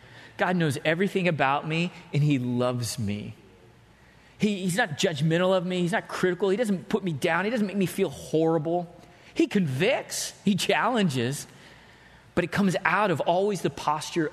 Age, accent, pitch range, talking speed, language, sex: 30-49, American, 135-190 Hz, 170 wpm, English, male